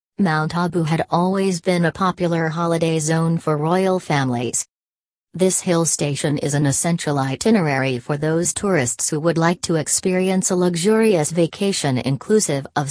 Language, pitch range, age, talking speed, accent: English, 145-175 Hz, 40-59, 150 wpm, American